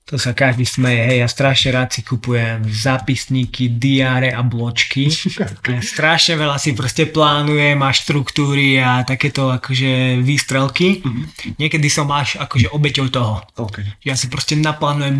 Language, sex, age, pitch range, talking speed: Slovak, male, 20-39, 125-150 Hz, 140 wpm